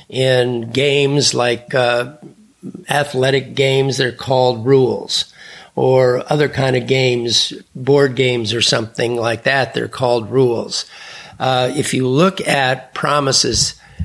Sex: male